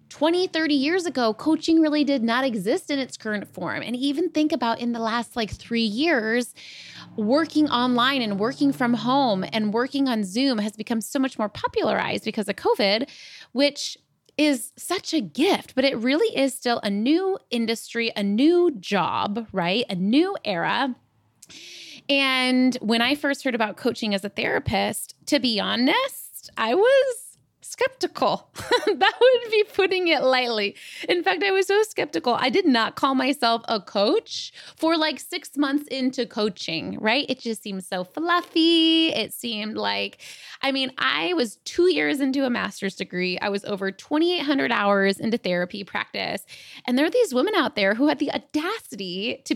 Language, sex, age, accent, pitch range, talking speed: English, female, 20-39, American, 225-315 Hz, 170 wpm